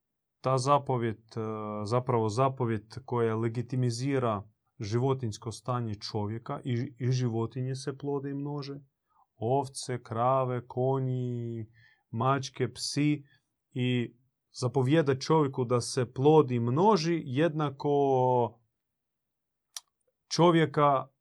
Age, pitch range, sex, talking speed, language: 30-49, 115-140 Hz, male, 85 wpm, Croatian